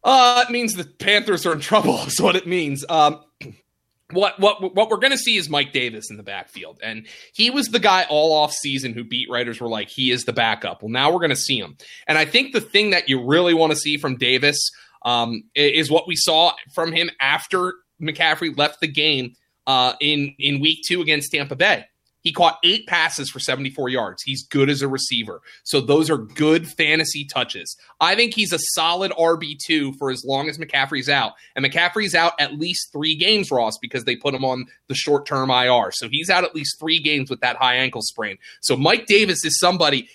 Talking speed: 220 wpm